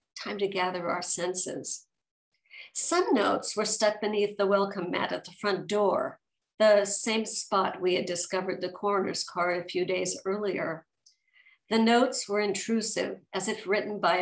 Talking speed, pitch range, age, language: 160 wpm, 185-220 Hz, 50-69, English